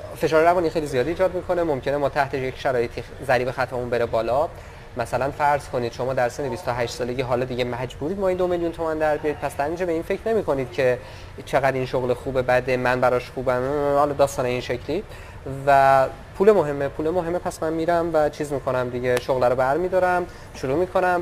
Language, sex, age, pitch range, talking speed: Persian, male, 20-39, 125-155 Hz, 205 wpm